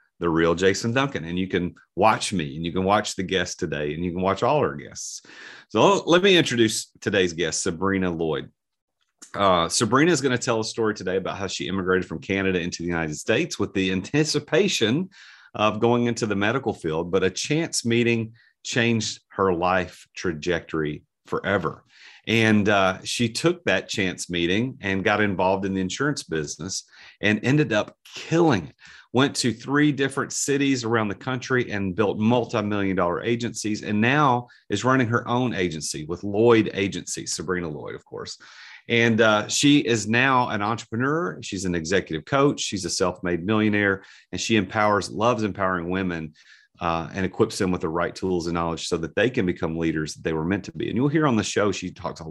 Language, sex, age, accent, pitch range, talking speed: English, male, 40-59, American, 90-115 Hz, 190 wpm